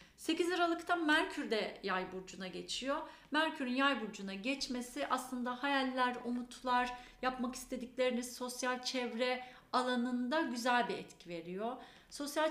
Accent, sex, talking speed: native, female, 115 wpm